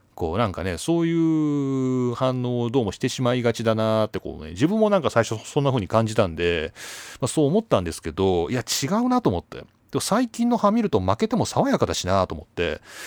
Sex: male